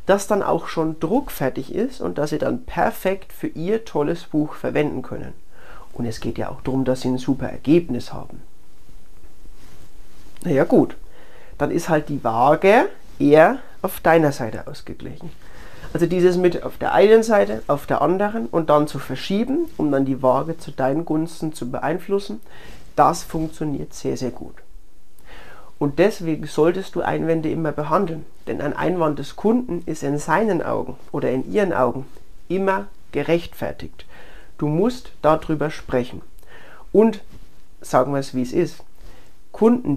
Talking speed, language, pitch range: 155 wpm, German, 140-195 Hz